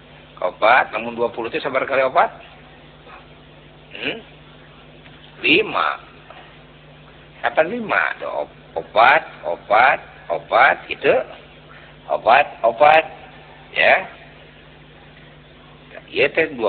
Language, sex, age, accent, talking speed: Indonesian, male, 50-69, native, 65 wpm